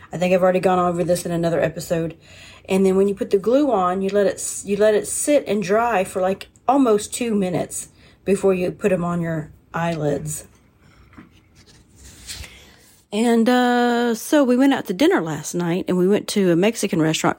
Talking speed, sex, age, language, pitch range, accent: 195 wpm, female, 40-59, English, 165-200 Hz, American